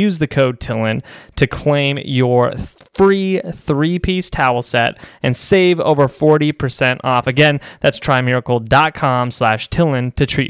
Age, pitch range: 20-39, 105-135 Hz